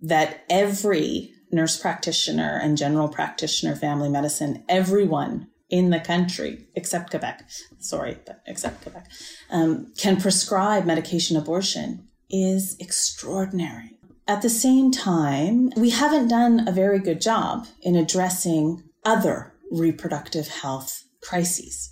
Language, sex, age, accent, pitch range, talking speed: English, female, 30-49, American, 155-200 Hz, 120 wpm